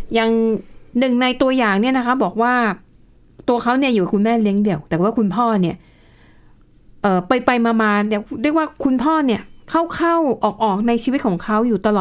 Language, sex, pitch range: Thai, female, 200-250 Hz